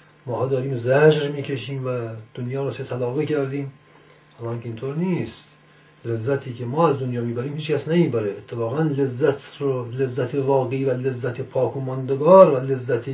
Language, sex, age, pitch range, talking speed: Persian, male, 50-69, 120-150 Hz, 140 wpm